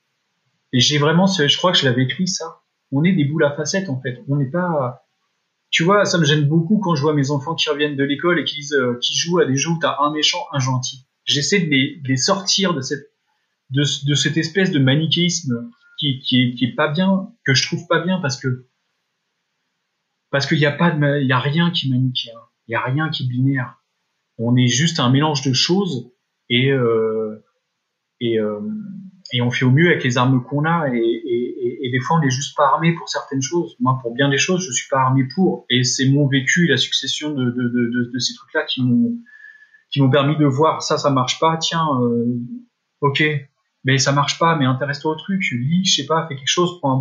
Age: 30-49